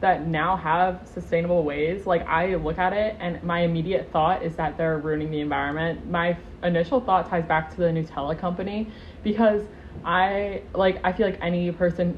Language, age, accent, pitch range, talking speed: English, 20-39, American, 165-190 Hz, 185 wpm